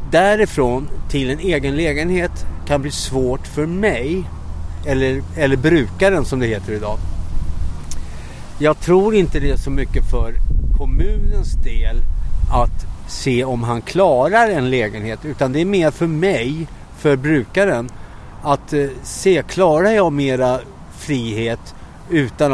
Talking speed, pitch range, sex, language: 130 wpm, 110-145 Hz, male, Swedish